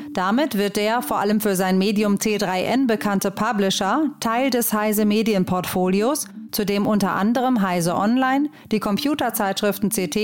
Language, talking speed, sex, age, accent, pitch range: German, 140 wpm, female, 30-49, German, 200-235 Hz